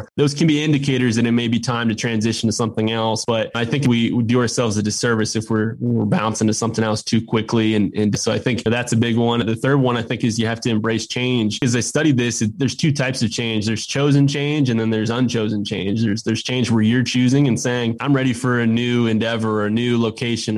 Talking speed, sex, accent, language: 250 wpm, male, American, English